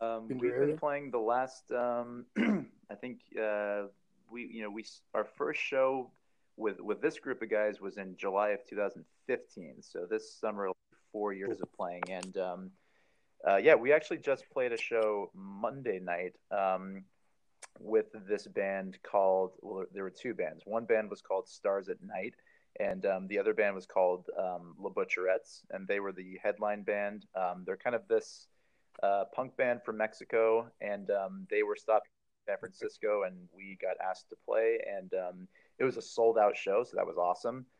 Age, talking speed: 30-49, 185 wpm